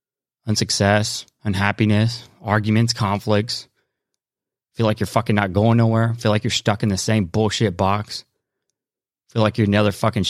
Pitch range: 105-125 Hz